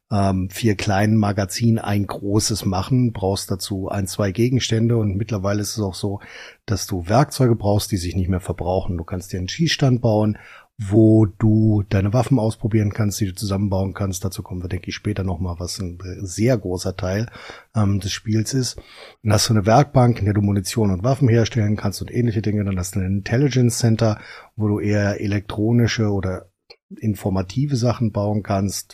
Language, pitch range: German, 95-115 Hz